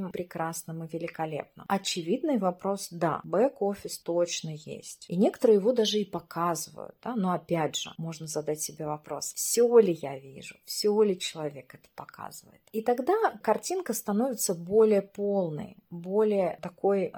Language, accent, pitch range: Russian, native, 165-230 Hz